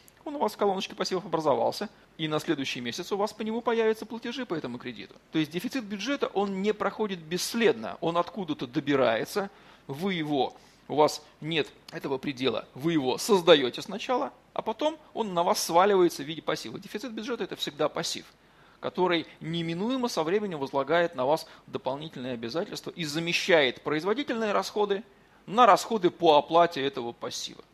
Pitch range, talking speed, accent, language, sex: 150-205 Hz, 160 wpm, native, Russian, male